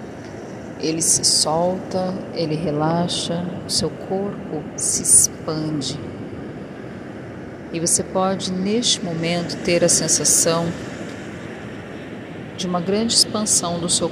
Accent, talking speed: Brazilian, 100 wpm